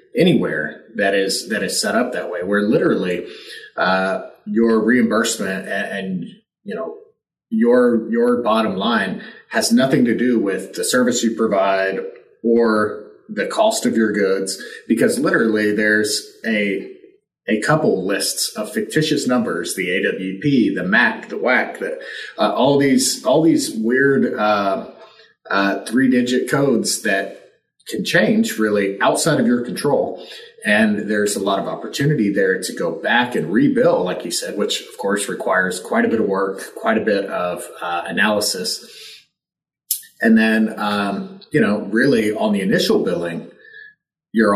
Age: 30-49